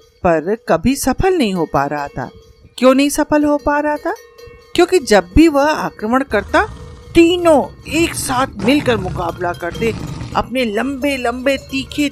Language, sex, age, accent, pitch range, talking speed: Hindi, female, 50-69, native, 185-265 Hz, 155 wpm